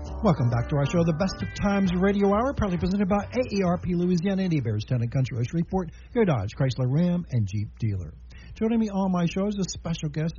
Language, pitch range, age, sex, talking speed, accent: English, 130-185 Hz, 60-79, male, 225 wpm, American